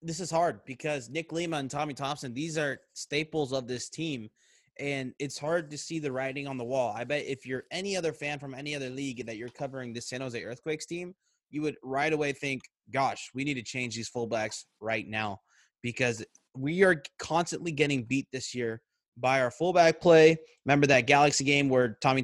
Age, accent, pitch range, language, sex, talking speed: 20-39, American, 130-155 Hz, English, male, 205 wpm